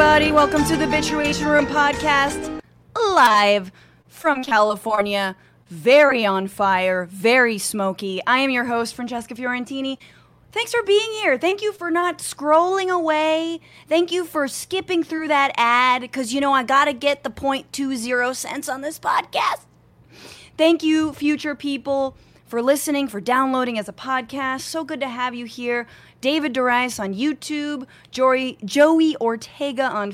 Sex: female